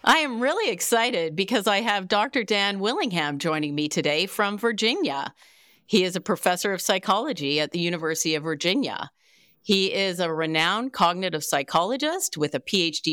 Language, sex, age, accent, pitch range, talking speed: English, female, 40-59, American, 155-210 Hz, 160 wpm